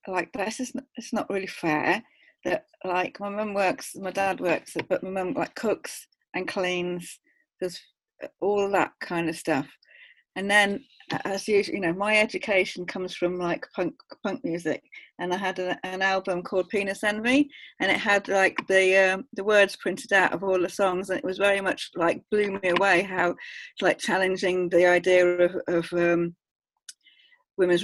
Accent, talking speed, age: British, 180 wpm, 40-59